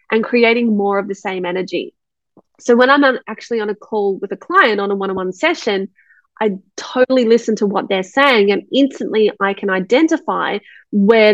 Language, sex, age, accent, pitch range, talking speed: English, female, 30-49, Australian, 200-245 Hz, 180 wpm